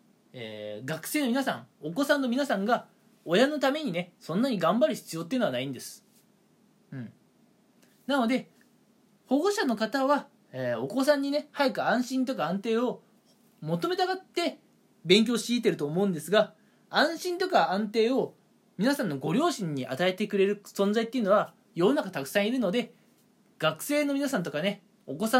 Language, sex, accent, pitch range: Japanese, male, native, 185-260 Hz